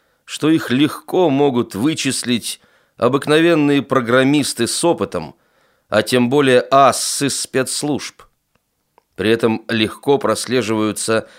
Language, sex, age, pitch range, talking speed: Russian, male, 30-49, 105-135 Hz, 95 wpm